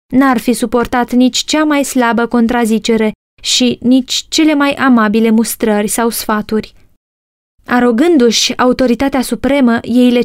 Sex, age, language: female, 20-39, Romanian